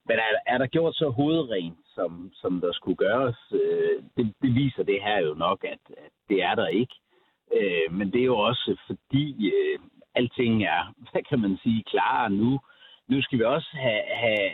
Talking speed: 180 wpm